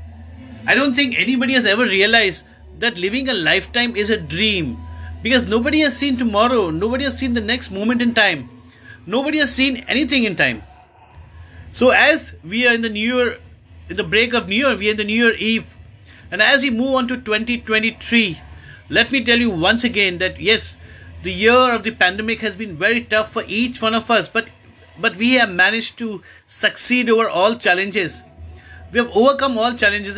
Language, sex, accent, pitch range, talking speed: English, male, Indian, 165-245 Hz, 195 wpm